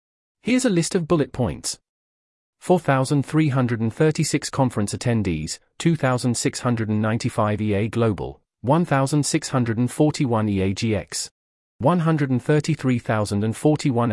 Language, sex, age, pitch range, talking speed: English, male, 40-59, 105-150 Hz, 70 wpm